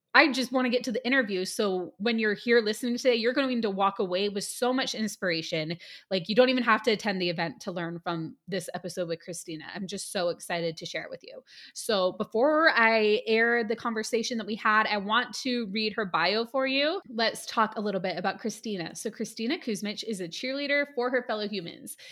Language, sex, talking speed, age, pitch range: English, female, 225 wpm, 20-39, 205-270 Hz